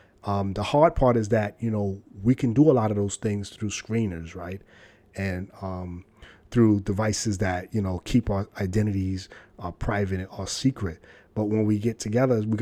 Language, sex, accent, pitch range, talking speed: English, male, American, 100-120 Hz, 185 wpm